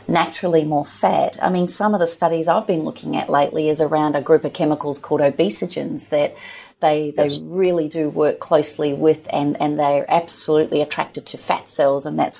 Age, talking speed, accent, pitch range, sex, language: 30-49, 195 wpm, Australian, 150-185 Hz, female, English